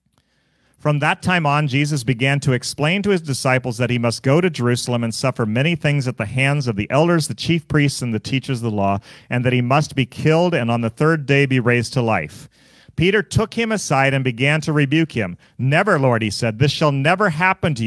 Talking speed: 230 wpm